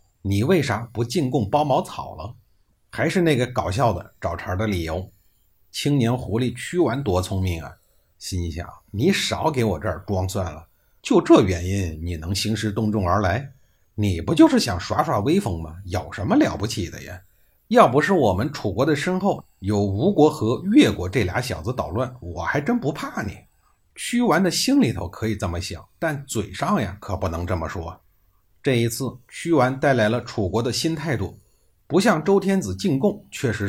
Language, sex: Chinese, male